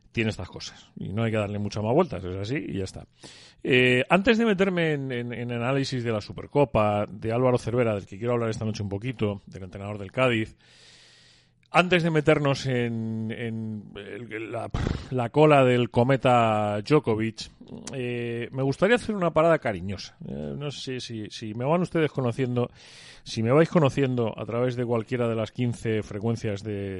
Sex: male